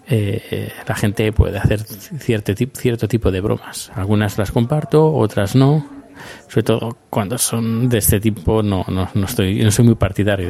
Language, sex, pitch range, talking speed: Spanish, male, 100-120 Hz, 175 wpm